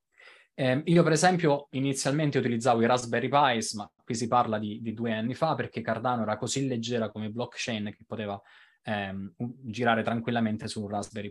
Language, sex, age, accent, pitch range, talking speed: Italian, male, 20-39, native, 110-130 Hz, 165 wpm